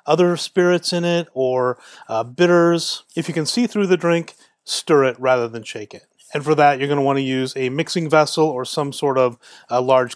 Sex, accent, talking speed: male, American, 225 wpm